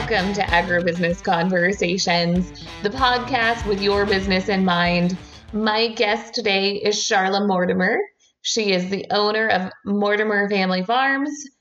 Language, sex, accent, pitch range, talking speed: English, female, American, 185-235 Hz, 130 wpm